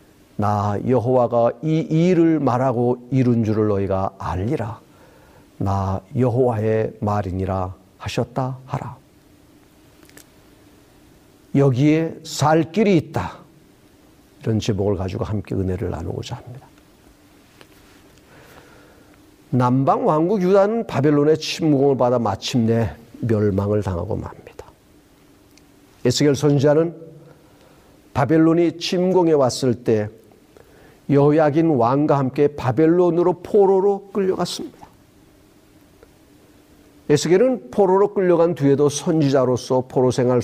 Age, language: 50-69, Korean